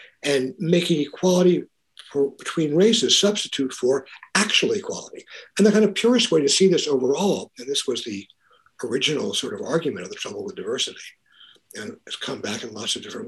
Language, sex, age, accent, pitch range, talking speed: English, male, 60-79, American, 135-190 Hz, 180 wpm